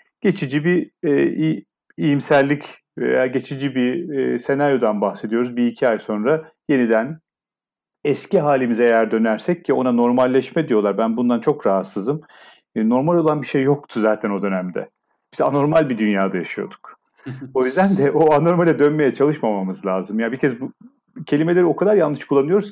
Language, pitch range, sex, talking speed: Turkish, 125-170 Hz, male, 155 wpm